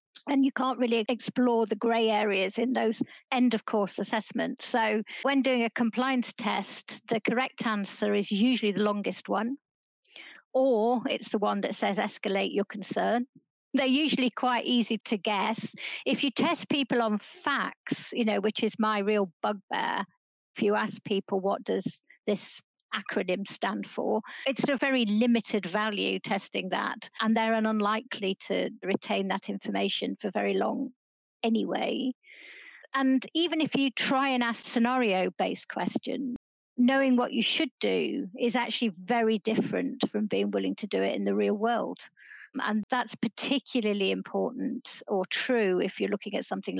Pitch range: 210-255 Hz